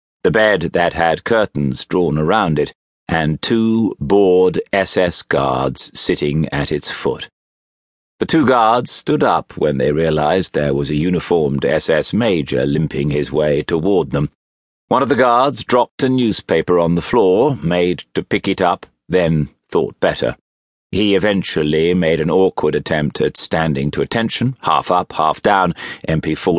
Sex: male